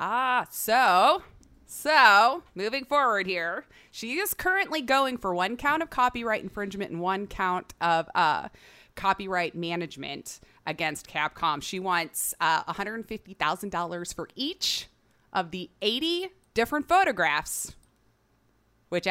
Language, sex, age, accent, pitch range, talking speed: English, female, 30-49, American, 175-245 Hz, 115 wpm